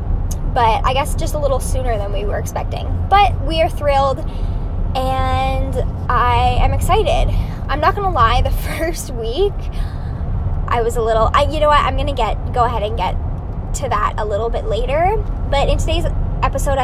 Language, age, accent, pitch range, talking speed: English, 10-29, American, 85-95 Hz, 190 wpm